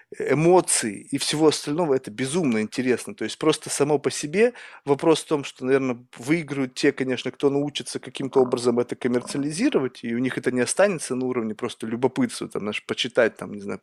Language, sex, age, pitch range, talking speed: Russian, male, 20-39, 125-155 Hz, 185 wpm